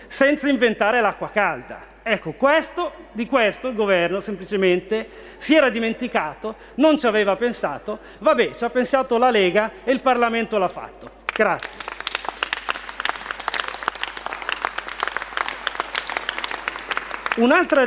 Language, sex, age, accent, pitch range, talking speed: Italian, male, 40-59, native, 205-255 Hz, 105 wpm